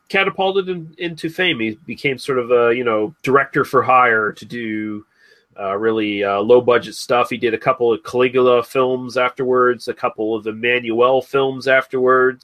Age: 30-49